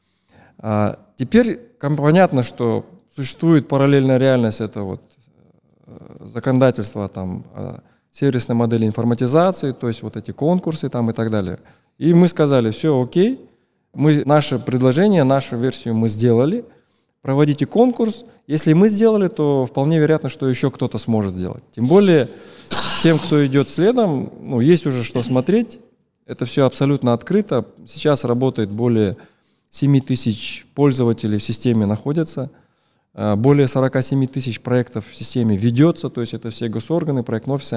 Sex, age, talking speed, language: male, 20-39, 130 wpm, Russian